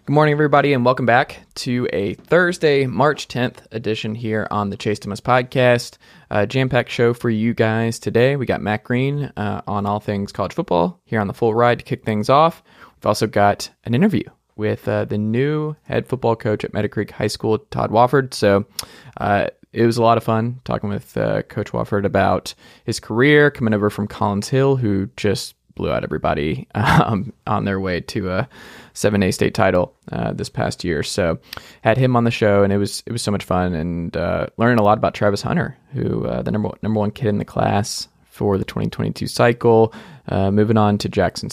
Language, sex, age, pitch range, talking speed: English, male, 20-39, 100-125 Hz, 205 wpm